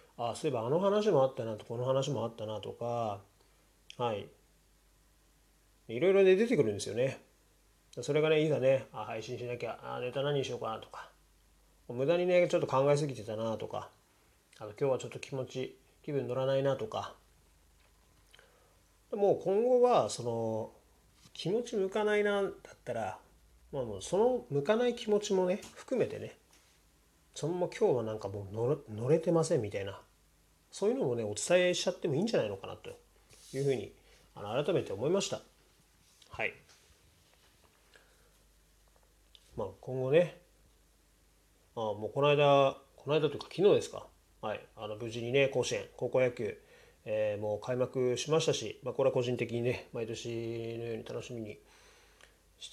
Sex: male